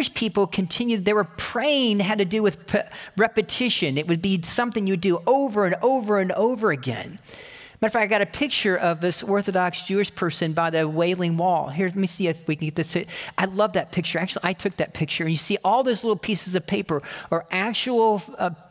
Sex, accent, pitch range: male, American, 170-215 Hz